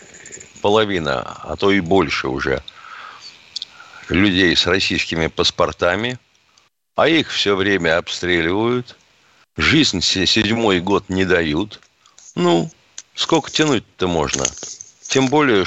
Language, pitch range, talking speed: Russian, 95-140 Hz, 100 wpm